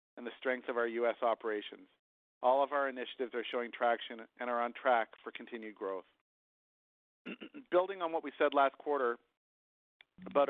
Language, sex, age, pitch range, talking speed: English, male, 40-59, 115-135 Hz, 165 wpm